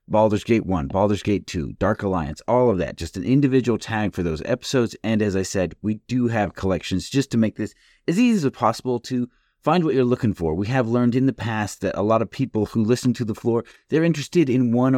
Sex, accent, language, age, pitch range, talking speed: male, American, English, 30-49, 95-120 Hz, 240 wpm